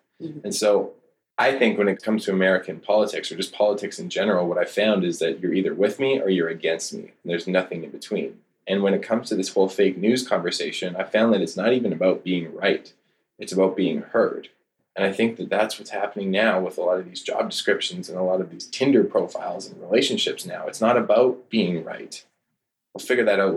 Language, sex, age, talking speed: English, male, 20-39, 230 wpm